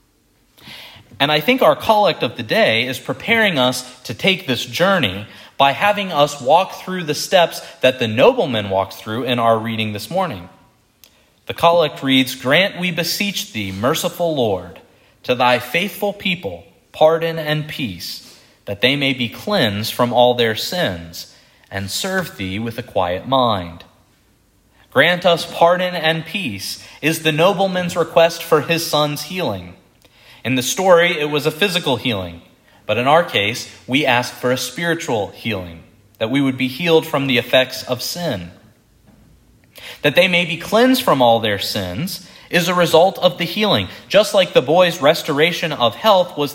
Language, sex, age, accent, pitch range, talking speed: English, male, 30-49, American, 115-175 Hz, 165 wpm